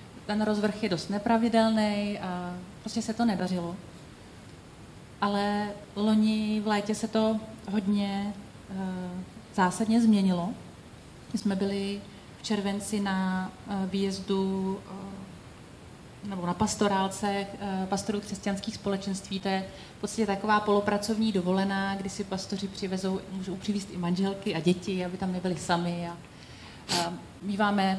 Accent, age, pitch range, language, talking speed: native, 30-49, 195-225 Hz, Czech, 125 wpm